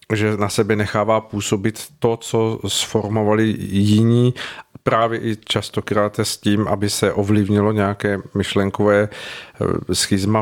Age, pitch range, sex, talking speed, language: 50-69, 105-115 Hz, male, 115 wpm, Czech